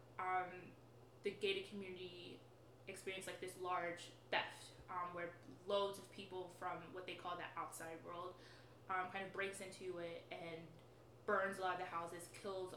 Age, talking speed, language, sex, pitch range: 20-39, 165 wpm, English, female, 170-195 Hz